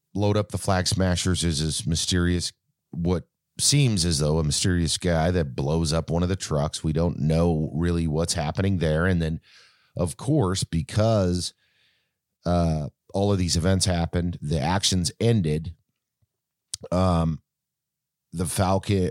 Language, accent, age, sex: English, American, 30-49, male